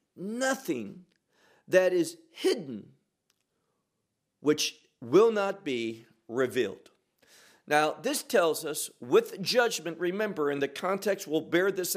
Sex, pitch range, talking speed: male, 140-225 Hz, 110 wpm